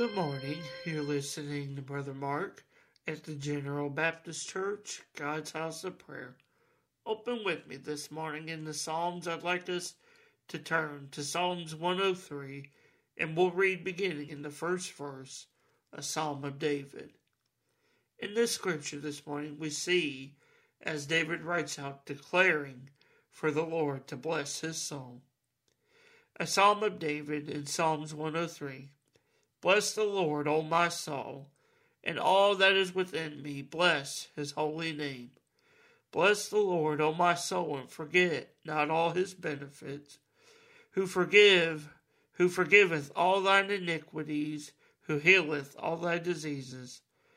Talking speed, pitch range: 140 wpm, 145-185 Hz